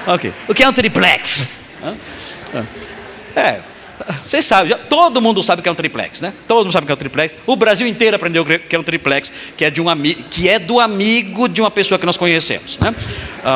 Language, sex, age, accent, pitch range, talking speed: Portuguese, male, 50-69, Brazilian, 165-245 Hz, 225 wpm